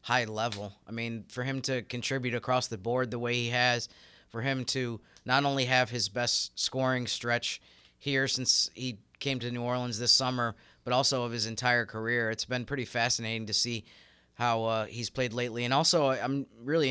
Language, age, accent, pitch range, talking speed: English, 30-49, American, 110-125 Hz, 195 wpm